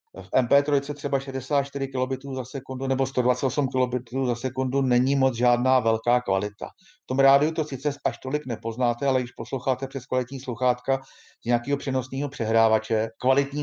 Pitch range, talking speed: 120-140 Hz, 155 wpm